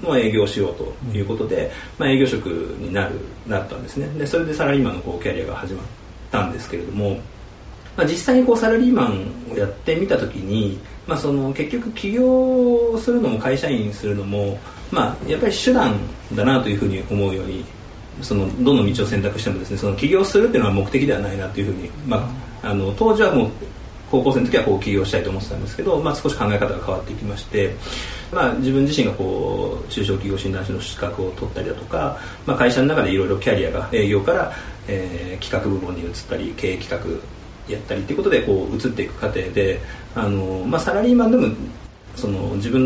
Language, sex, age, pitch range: Japanese, male, 40-59, 100-135 Hz